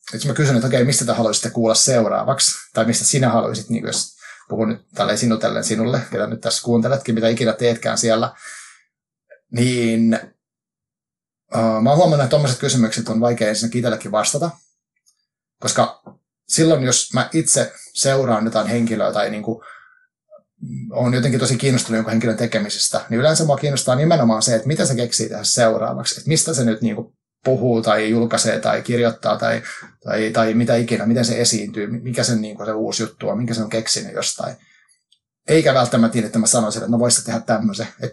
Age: 30-49